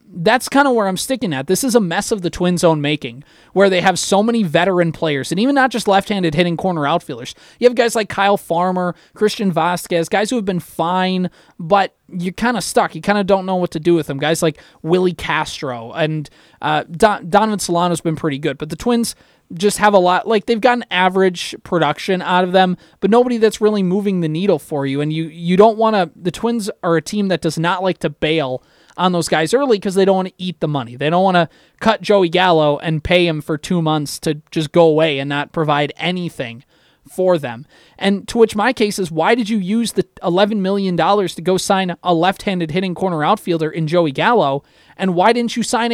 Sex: male